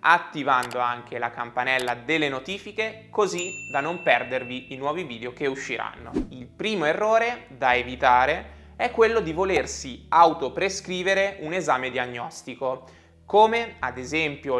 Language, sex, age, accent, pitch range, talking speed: Italian, male, 20-39, native, 125-190 Hz, 125 wpm